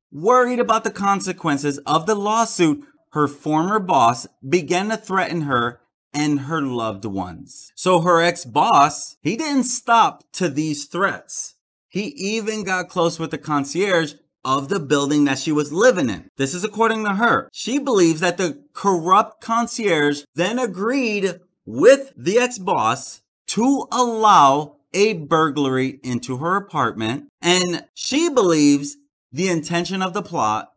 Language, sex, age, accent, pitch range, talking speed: English, male, 30-49, American, 145-215 Hz, 140 wpm